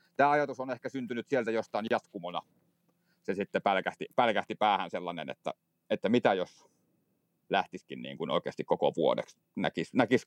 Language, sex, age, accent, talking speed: Finnish, male, 40-59, native, 140 wpm